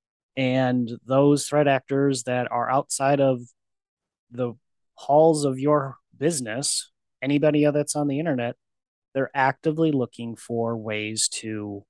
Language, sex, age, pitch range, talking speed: English, male, 30-49, 115-140 Hz, 120 wpm